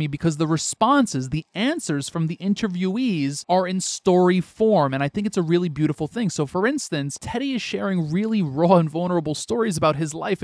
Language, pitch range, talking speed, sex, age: English, 160-210 Hz, 195 wpm, male, 30-49